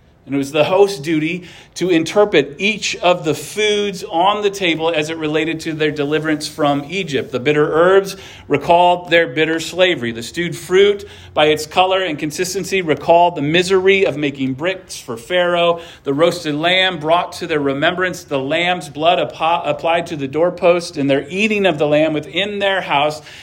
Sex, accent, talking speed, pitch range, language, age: male, American, 175 wpm, 150-195 Hz, English, 40-59